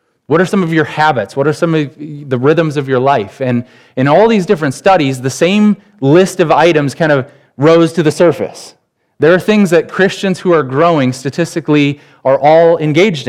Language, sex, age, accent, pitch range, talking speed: English, male, 30-49, American, 135-165 Hz, 200 wpm